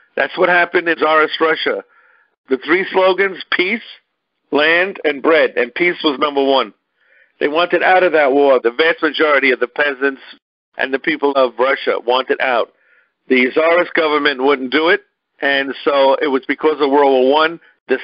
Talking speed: 175 wpm